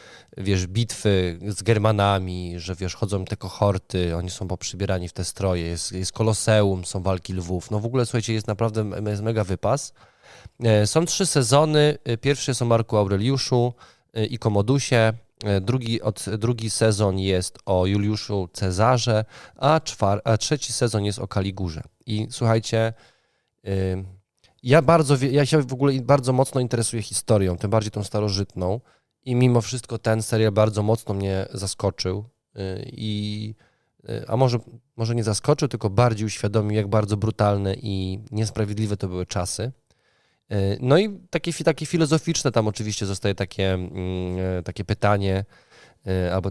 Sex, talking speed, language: male, 140 wpm, Polish